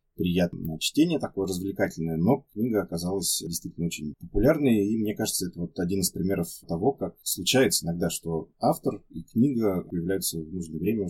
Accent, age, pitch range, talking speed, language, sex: native, 20-39, 80-95 Hz, 160 wpm, Russian, male